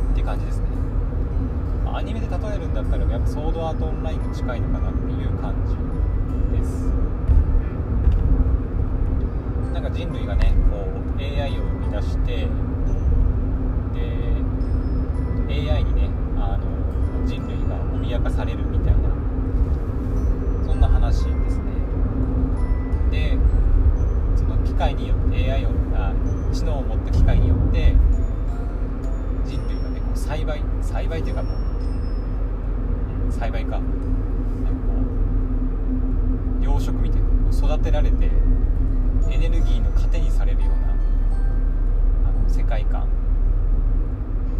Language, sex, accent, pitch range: Japanese, male, native, 85-90 Hz